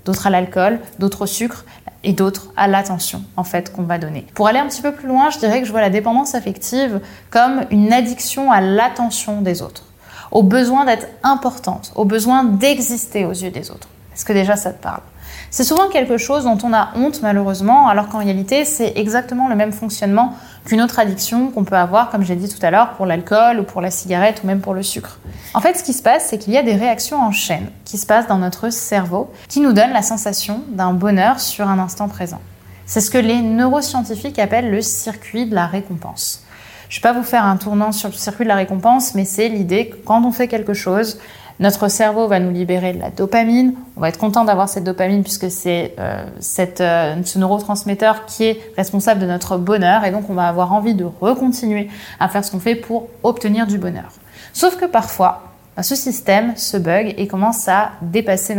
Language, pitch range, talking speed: French, 190-230 Hz, 220 wpm